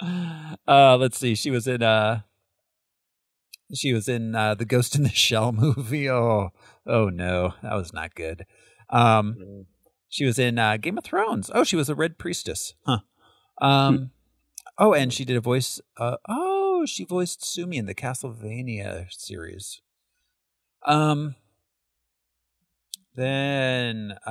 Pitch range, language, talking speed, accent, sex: 105-150 Hz, English, 140 wpm, American, male